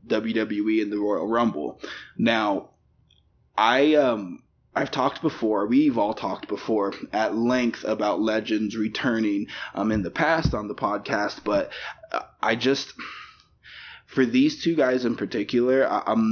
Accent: American